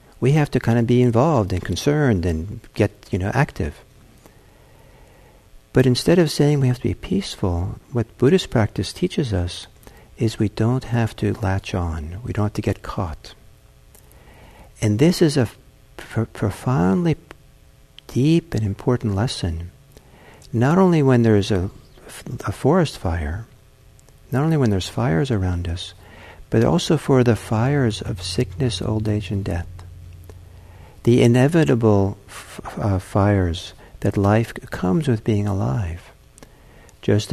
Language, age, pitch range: English, 60-79, 95-120 Hz